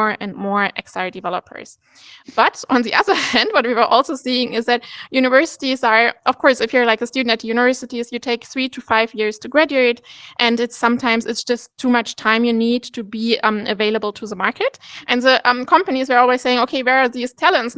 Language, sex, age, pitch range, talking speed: English, female, 20-39, 215-250 Hz, 215 wpm